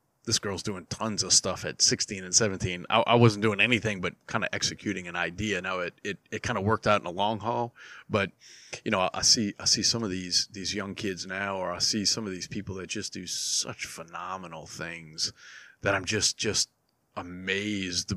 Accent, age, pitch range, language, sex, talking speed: American, 30-49, 90-105 Hz, English, male, 220 wpm